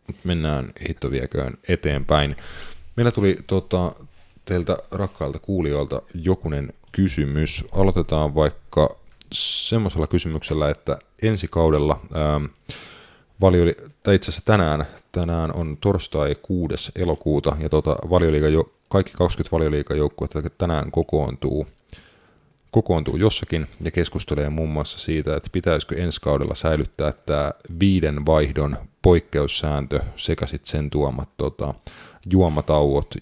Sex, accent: male, native